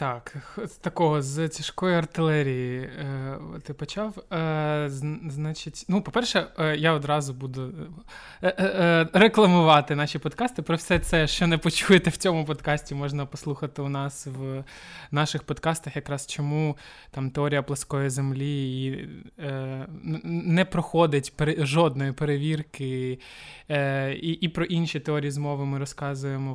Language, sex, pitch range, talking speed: Ukrainian, male, 140-165 Hz, 115 wpm